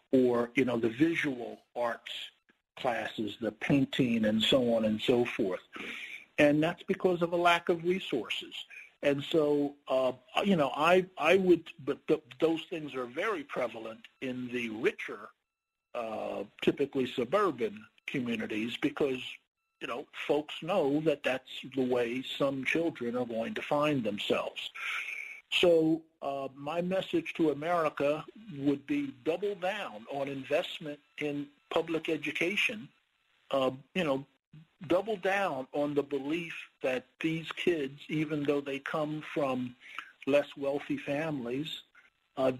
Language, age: English, 50-69